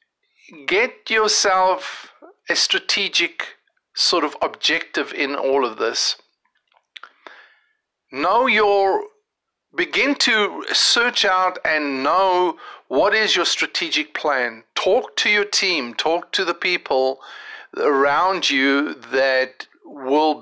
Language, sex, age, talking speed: English, male, 50-69, 105 wpm